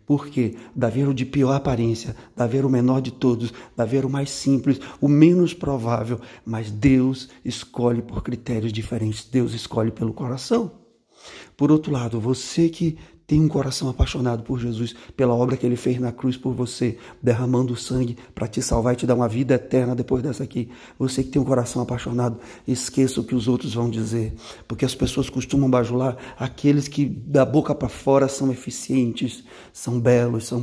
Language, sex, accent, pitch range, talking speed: Portuguese, male, Brazilian, 115-130 Hz, 185 wpm